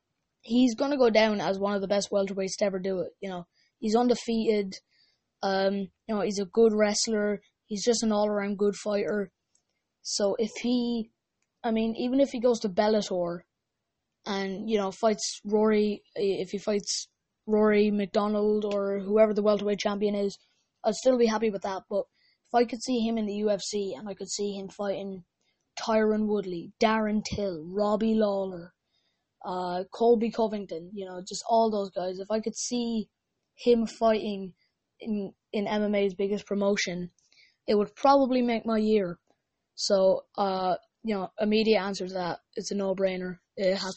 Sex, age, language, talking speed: female, 20-39, English, 170 wpm